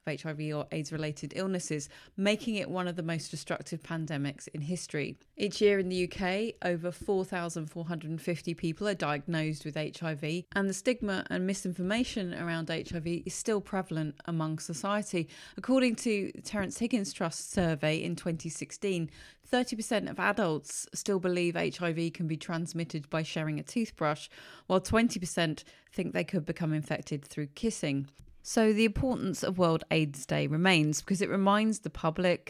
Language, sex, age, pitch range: English, female, 30-49, 155-195 Hz